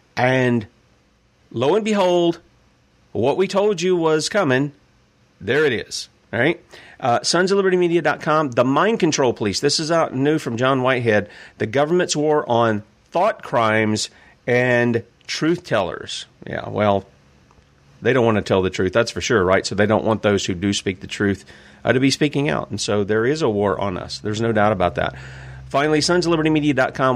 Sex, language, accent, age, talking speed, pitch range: male, English, American, 40-59, 175 wpm, 110-180 Hz